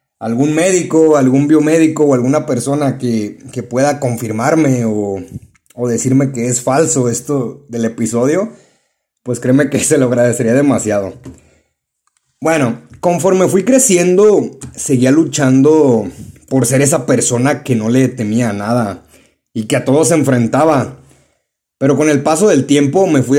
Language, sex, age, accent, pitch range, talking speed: Spanish, male, 30-49, Mexican, 120-150 Hz, 145 wpm